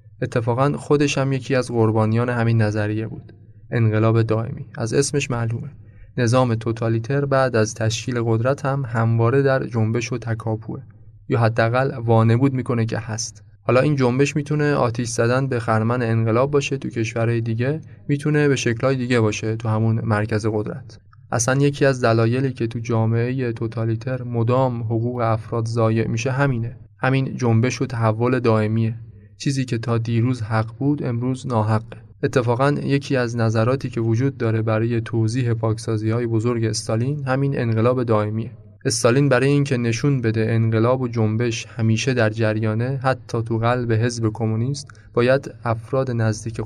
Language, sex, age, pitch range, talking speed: Persian, male, 20-39, 110-130 Hz, 150 wpm